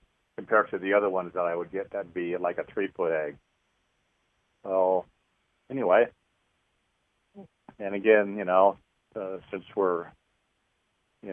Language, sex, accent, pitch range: English, male, American, 90-100 Hz